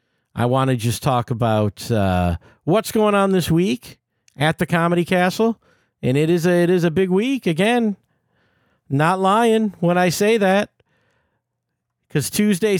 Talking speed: 150 wpm